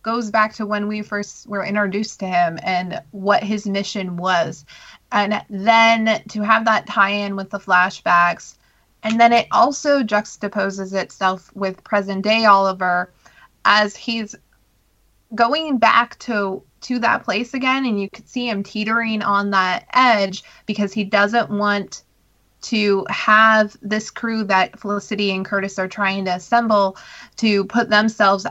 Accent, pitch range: American, 190-220 Hz